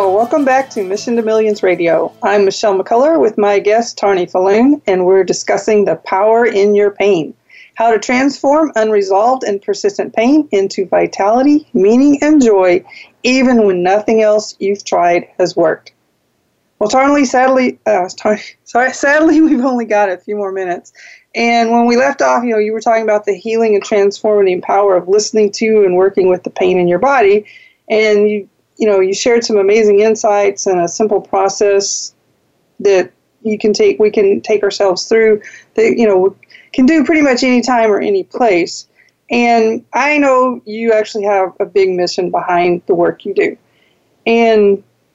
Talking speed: 180 wpm